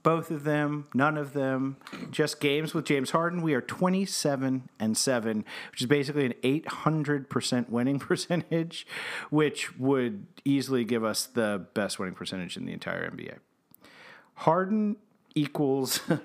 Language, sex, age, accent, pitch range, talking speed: English, male, 40-59, American, 130-170 Hz, 140 wpm